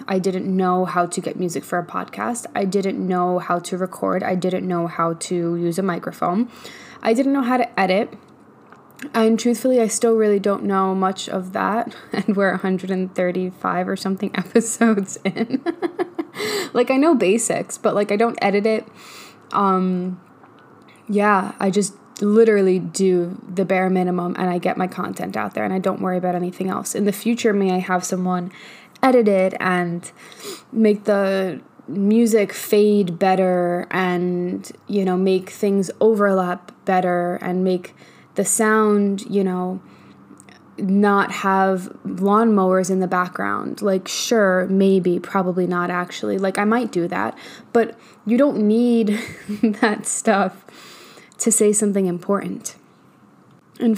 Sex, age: female, 10-29